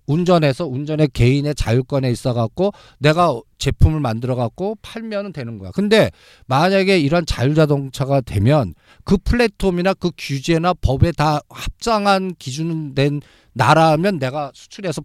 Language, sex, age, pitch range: Korean, male, 50-69, 125-175 Hz